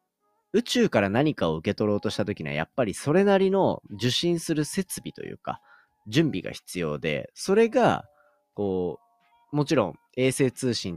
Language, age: Japanese, 30-49